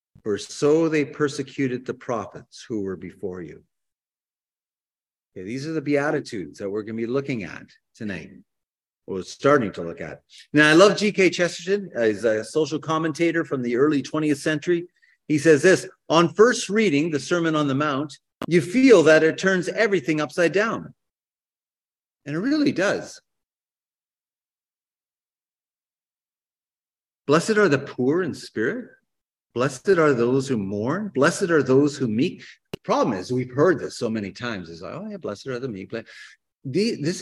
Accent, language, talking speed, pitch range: American, English, 160 wpm, 130-180 Hz